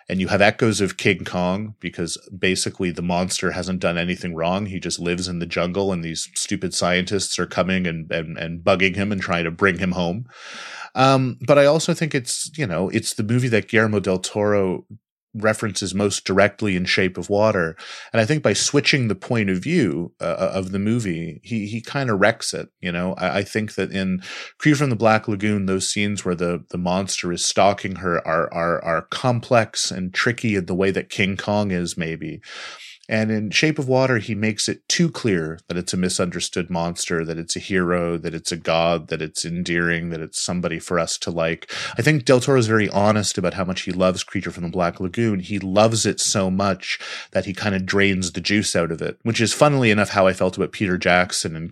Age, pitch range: 30-49, 90-110 Hz